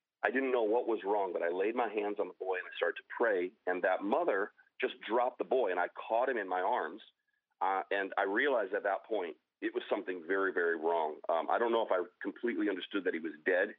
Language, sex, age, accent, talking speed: English, male, 40-59, American, 255 wpm